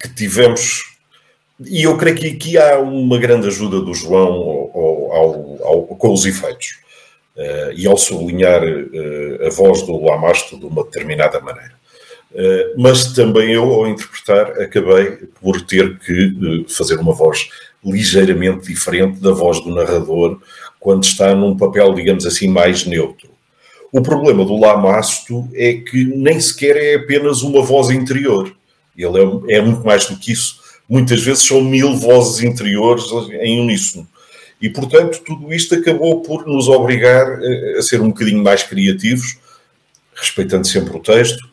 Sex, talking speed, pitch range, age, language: male, 155 wpm, 100-160 Hz, 50-69, Portuguese